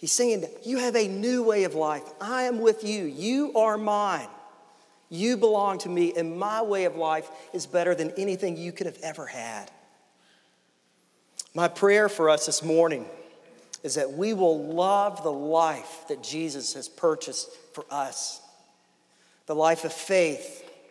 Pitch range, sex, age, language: 160-205 Hz, male, 40-59, English